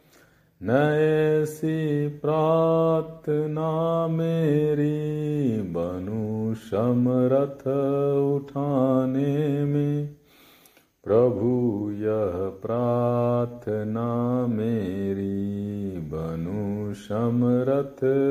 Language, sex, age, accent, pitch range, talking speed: Hindi, male, 50-69, native, 115-150 Hz, 40 wpm